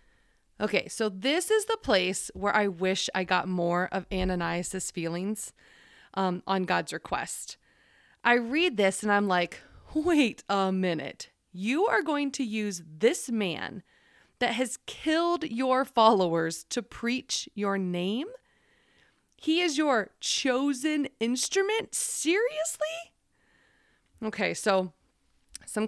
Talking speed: 125 wpm